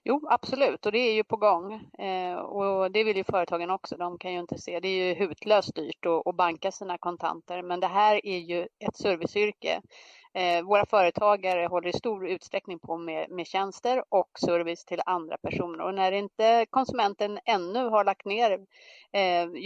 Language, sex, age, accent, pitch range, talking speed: English, female, 30-49, Swedish, 175-215 Hz, 190 wpm